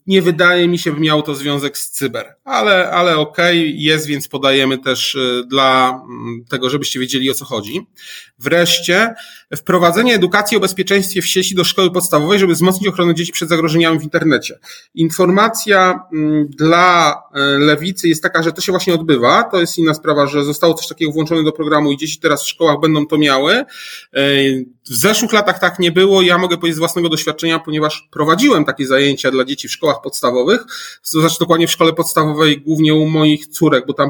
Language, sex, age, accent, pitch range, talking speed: Polish, male, 30-49, native, 145-180 Hz, 185 wpm